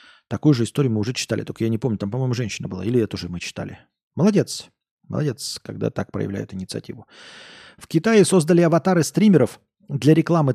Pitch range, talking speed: 110-140 Hz, 180 wpm